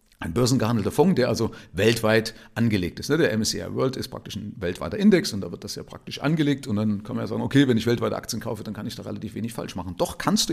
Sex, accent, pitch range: male, German, 115-180 Hz